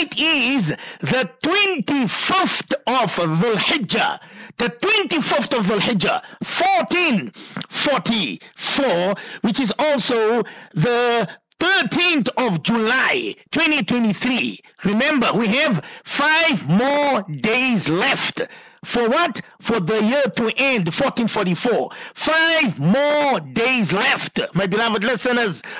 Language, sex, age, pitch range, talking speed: English, male, 50-69, 215-285 Hz, 100 wpm